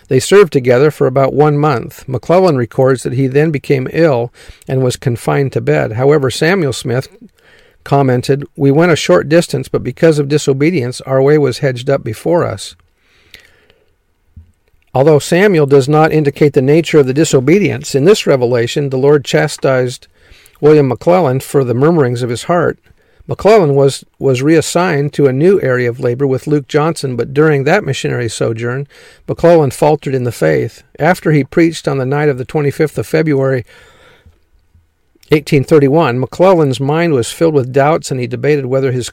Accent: American